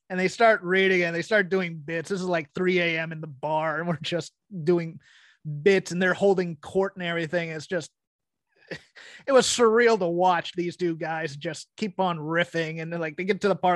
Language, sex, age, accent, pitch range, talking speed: English, male, 30-49, American, 160-185 Hz, 215 wpm